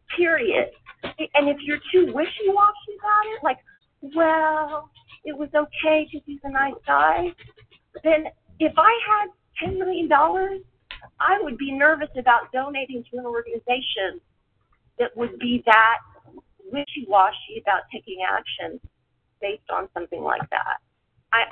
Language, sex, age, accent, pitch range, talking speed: English, female, 40-59, American, 250-370 Hz, 130 wpm